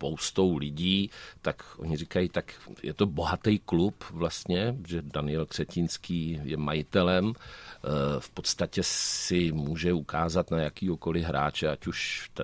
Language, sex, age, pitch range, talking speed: Czech, male, 50-69, 85-120 Hz, 120 wpm